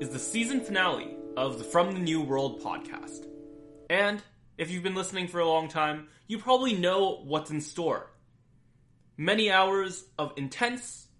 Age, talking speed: 20-39, 160 wpm